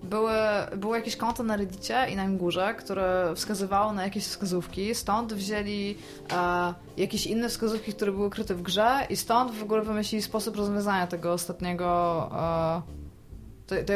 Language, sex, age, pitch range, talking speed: Polish, female, 20-39, 180-215 Hz, 155 wpm